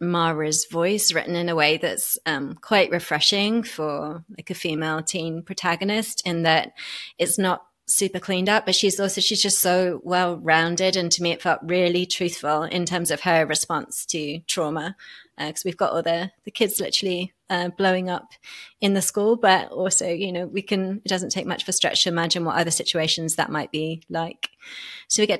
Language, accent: English, British